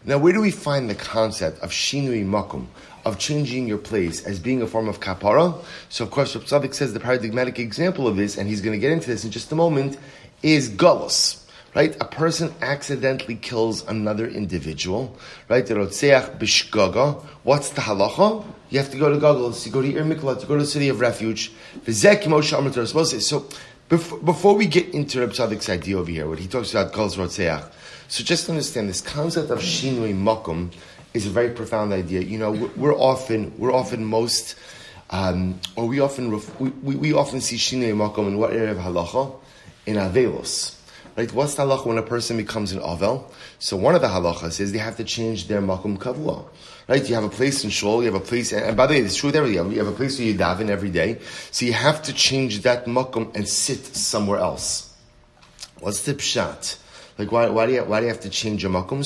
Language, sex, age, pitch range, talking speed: English, male, 30-49, 105-140 Hz, 205 wpm